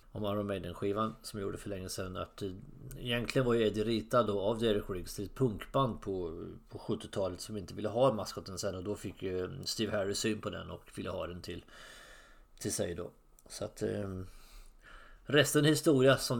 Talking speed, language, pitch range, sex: 190 wpm, English, 100-130 Hz, male